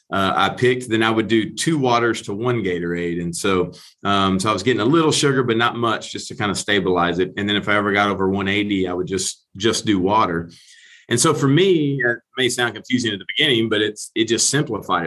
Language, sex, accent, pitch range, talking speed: English, male, American, 95-120 Hz, 245 wpm